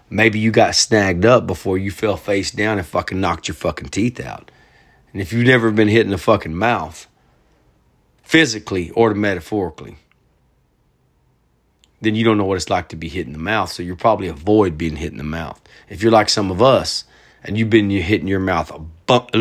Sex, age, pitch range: male, 40-59, 90-115 Hz